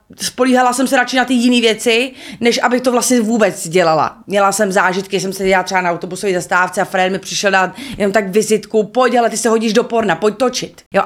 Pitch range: 190-245 Hz